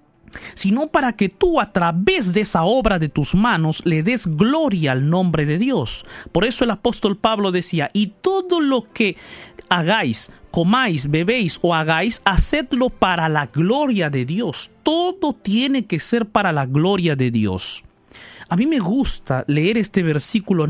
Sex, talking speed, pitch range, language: male, 160 wpm, 180-255 Hz, Spanish